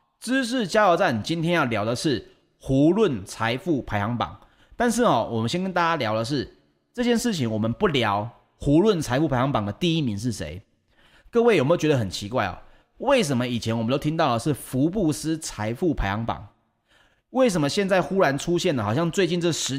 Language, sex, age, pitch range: Chinese, male, 30-49, 115-170 Hz